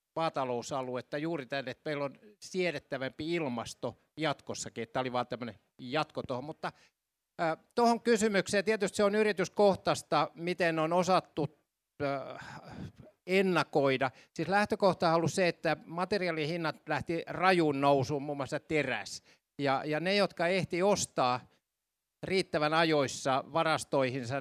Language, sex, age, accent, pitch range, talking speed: Finnish, male, 60-79, native, 140-175 Hz, 130 wpm